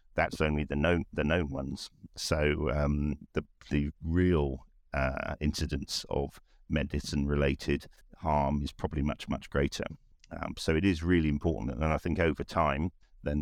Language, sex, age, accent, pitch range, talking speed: English, male, 50-69, British, 75-85 Hz, 155 wpm